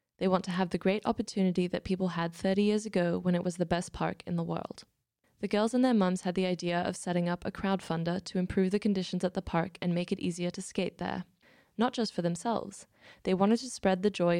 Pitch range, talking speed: 175-195 Hz, 245 wpm